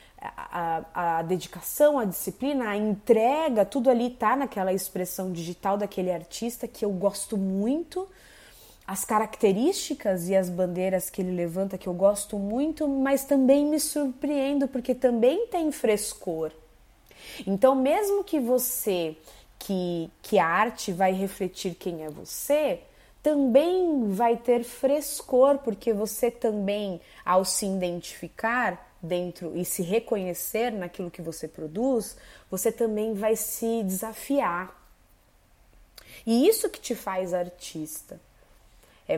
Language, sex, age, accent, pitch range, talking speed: Portuguese, female, 20-39, Brazilian, 185-250 Hz, 125 wpm